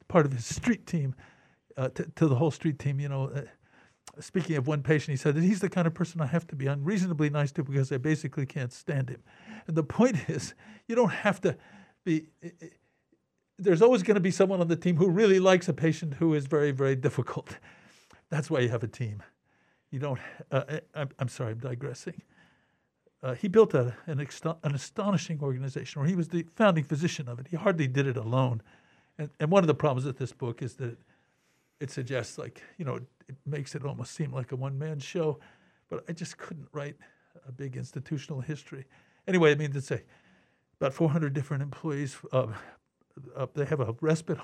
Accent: American